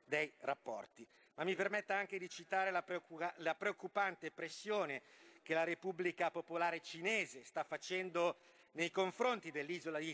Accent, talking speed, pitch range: native, 130 wpm, 165-200 Hz